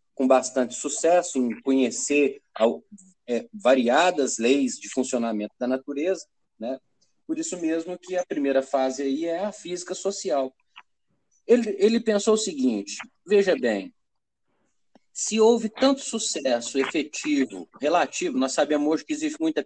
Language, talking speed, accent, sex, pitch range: Portuguese, 135 wpm, Brazilian, male, 130-185 Hz